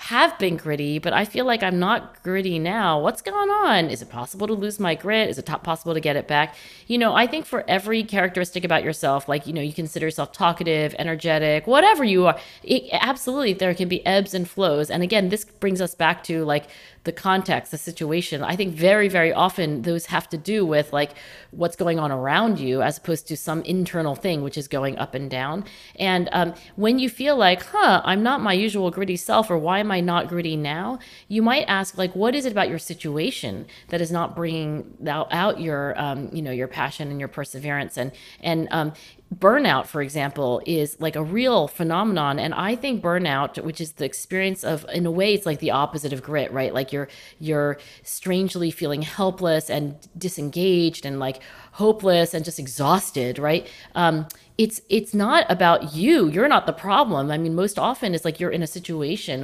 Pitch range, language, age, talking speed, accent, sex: 150-190 Hz, English, 40-59, 210 wpm, American, female